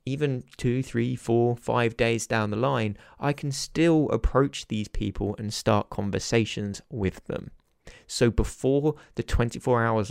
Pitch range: 105-135 Hz